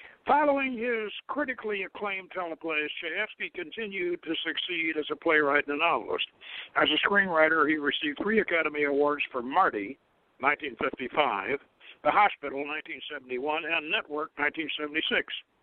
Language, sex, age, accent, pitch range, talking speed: English, male, 60-79, American, 150-215 Hz, 125 wpm